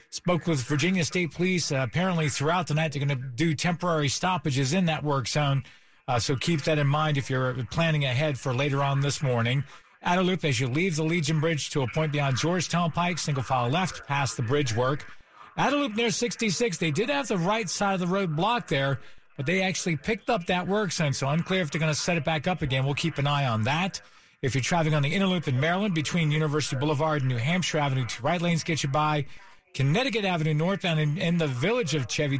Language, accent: English, American